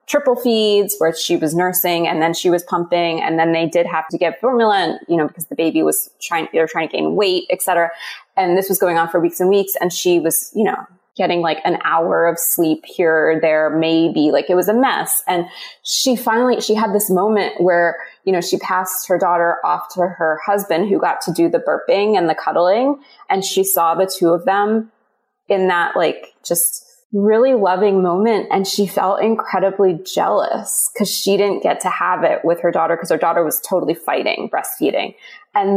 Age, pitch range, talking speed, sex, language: 20-39, 170-205 Hz, 215 wpm, female, English